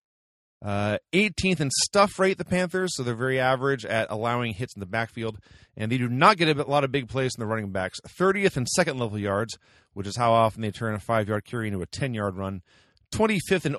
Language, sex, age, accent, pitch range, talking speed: English, male, 30-49, American, 100-140 Hz, 220 wpm